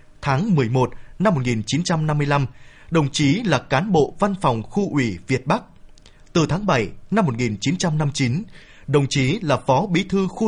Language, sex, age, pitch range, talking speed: Vietnamese, male, 20-39, 130-175 Hz, 155 wpm